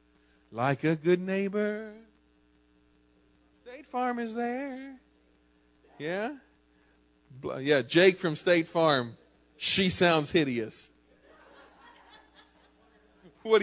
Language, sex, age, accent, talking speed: English, male, 40-59, American, 80 wpm